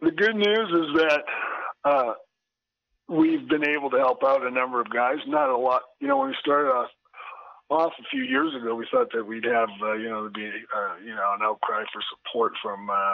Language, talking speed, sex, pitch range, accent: English, 215 wpm, male, 105-160 Hz, American